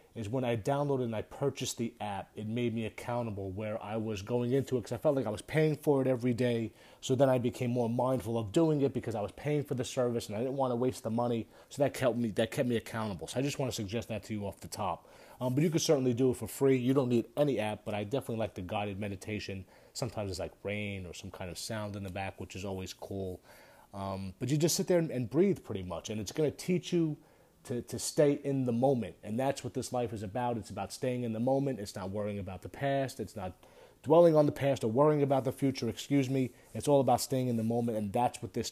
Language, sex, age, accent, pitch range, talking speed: English, male, 30-49, American, 110-135 Hz, 270 wpm